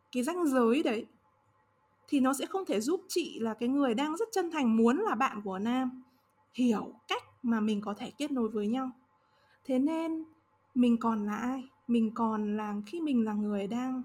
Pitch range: 210-265 Hz